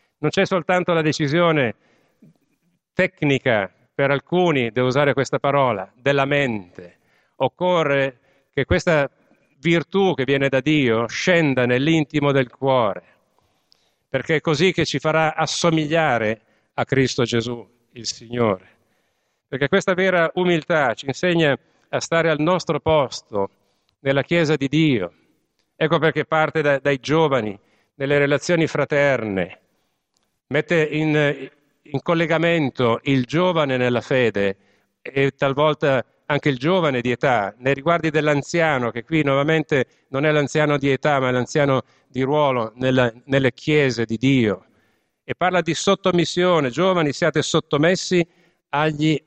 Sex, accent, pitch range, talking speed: male, native, 125-160 Hz, 130 wpm